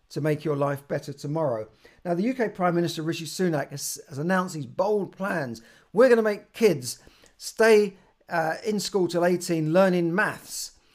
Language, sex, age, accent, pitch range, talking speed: English, male, 50-69, British, 145-185 Hz, 165 wpm